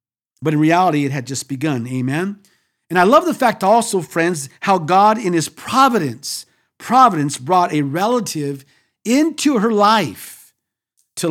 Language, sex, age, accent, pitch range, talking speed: English, male, 50-69, American, 150-200 Hz, 150 wpm